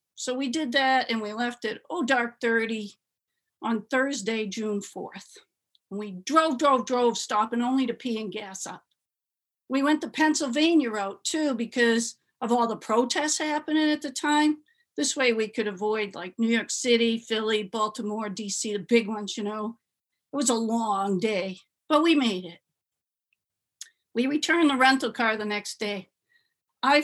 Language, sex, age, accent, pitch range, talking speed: English, female, 50-69, American, 210-270 Hz, 170 wpm